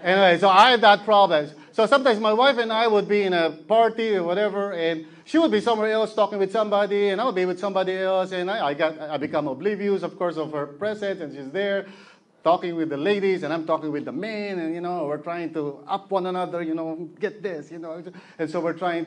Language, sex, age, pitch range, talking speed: English, male, 30-49, 160-215 Hz, 250 wpm